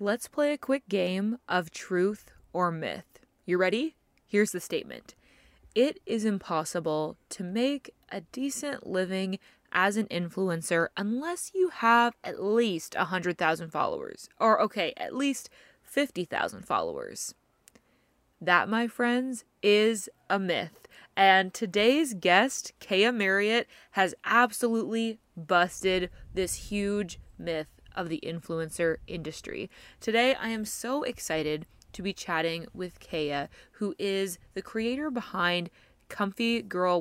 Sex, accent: female, American